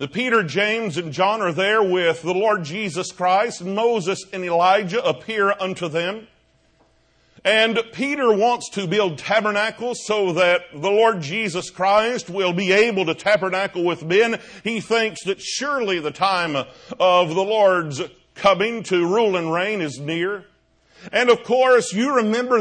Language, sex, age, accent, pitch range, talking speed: English, male, 50-69, American, 175-225 Hz, 150 wpm